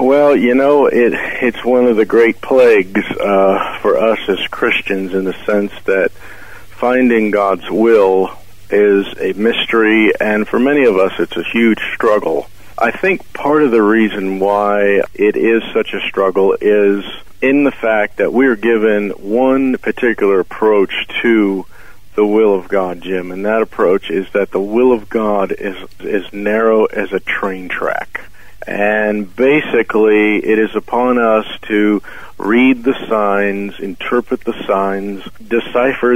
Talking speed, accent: 155 wpm, American